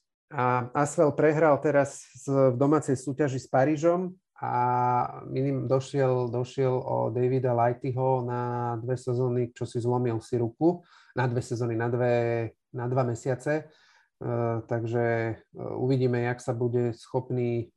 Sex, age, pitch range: male, 30-49, 120-135 Hz